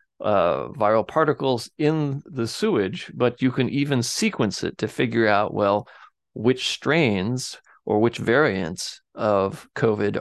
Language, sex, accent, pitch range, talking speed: English, male, American, 115-140 Hz, 135 wpm